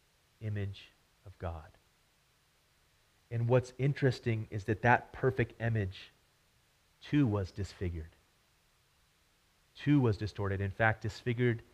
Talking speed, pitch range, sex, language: 100 wpm, 100-130 Hz, male, English